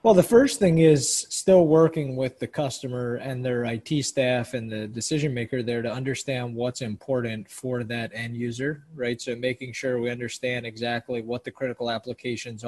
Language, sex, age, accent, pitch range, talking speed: English, male, 20-39, American, 120-135 Hz, 180 wpm